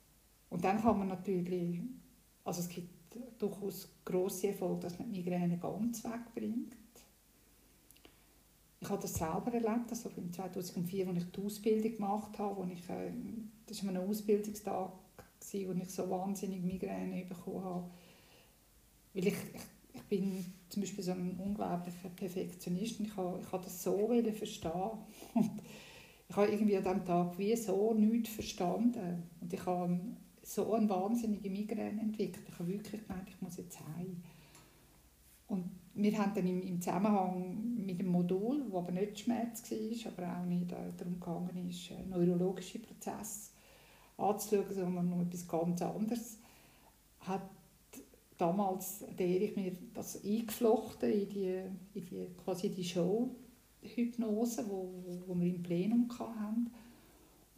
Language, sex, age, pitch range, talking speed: German, female, 60-79, 180-215 Hz, 140 wpm